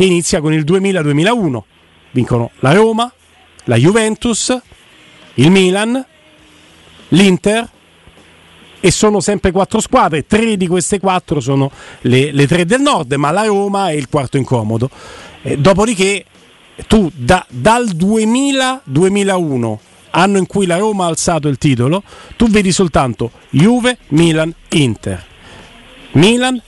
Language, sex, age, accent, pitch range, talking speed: Italian, male, 40-59, native, 145-215 Hz, 125 wpm